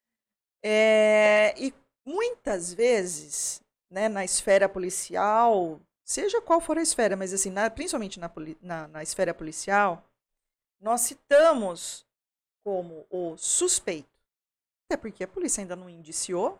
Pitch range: 185-285 Hz